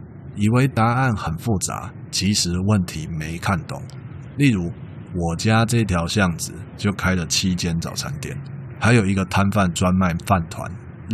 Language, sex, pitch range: Chinese, male, 90-125 Hz